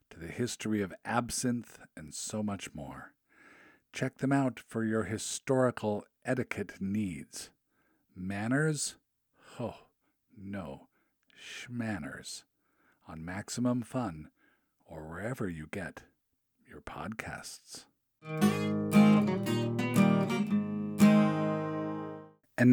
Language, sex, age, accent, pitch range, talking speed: English, male, 50-69, American, 90-130 Hz, 80 wpm